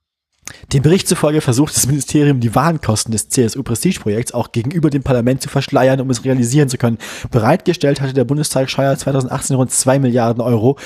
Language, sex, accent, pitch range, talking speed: German, male, German, 115-140 Hz, 170 wpm